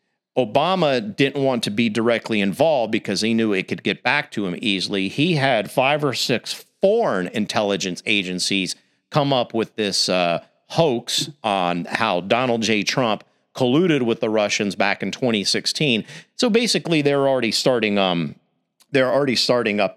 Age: 50-69